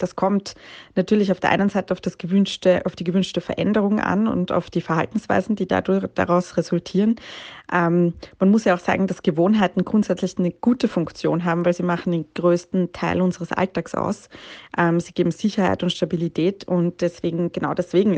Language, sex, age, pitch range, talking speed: German, female, 20-39, 170-190 Hz, 180 wpm